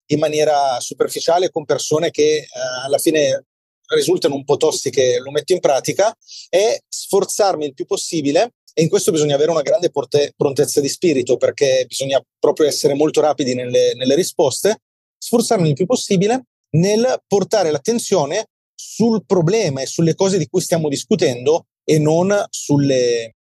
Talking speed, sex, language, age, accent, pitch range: 155 wpm, male, Italian, 30-49, native, 140-225 Hz